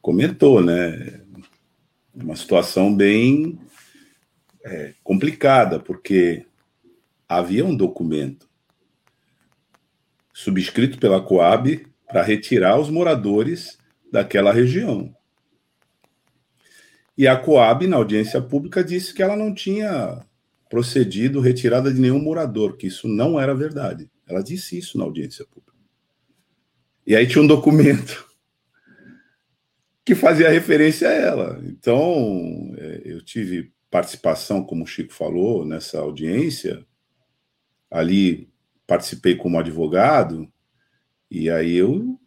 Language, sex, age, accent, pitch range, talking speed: Portuguese, male, 50-69, Brazilian, 90-150 Hz, 105 wpm